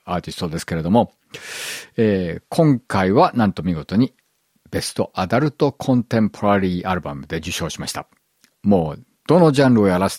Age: 50-69